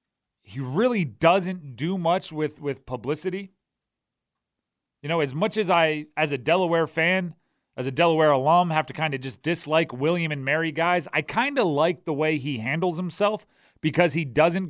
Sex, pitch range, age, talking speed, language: male, 145-195 Hz, 30-49, 180 wpm, English